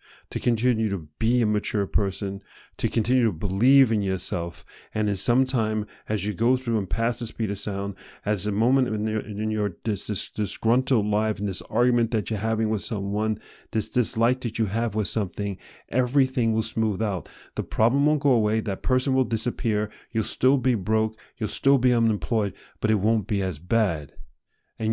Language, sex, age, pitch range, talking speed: English, male, 40-59, 100-120 Hz, 195 wpm